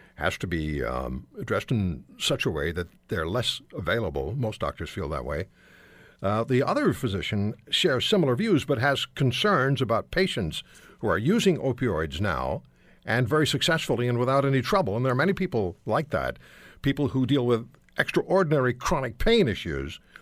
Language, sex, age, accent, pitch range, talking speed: English, male, 60-79, American, 90-135 Hz, 170 wpm